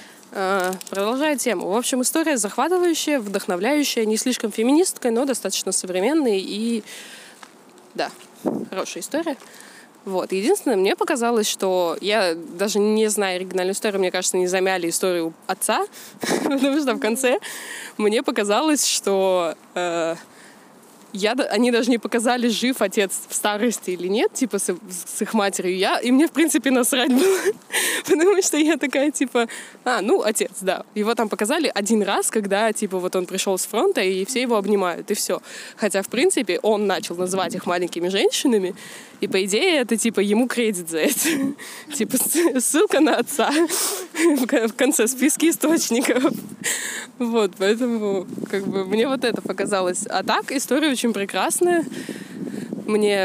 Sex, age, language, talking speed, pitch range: female, 20-39, Russian, 145 wpm, 195-260 Hz